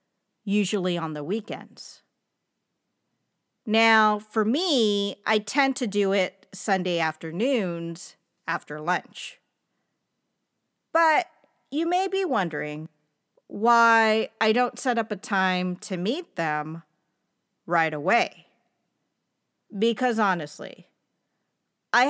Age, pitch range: 40-59, 175-245 Hz